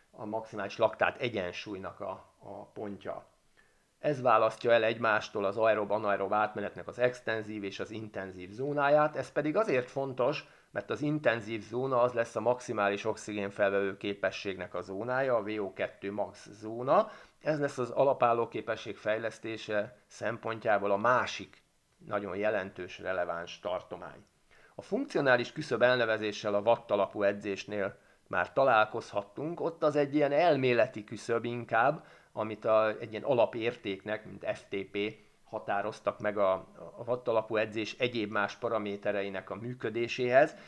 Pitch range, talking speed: 105-125 Hz, 125 wpm